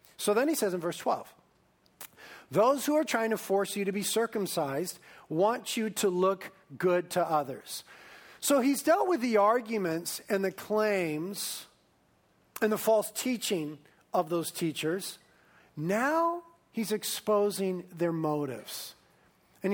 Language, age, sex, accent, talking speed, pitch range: English, 40-59, male, American, 140 wpm, 170-220 Hz